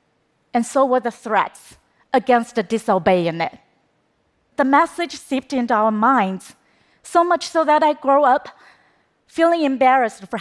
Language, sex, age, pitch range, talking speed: Portuguese, female, 30-49, 195-255 Hz, 145 wpm